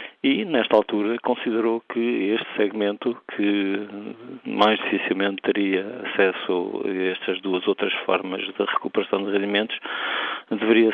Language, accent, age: Portuguese, Portuguese, 50-69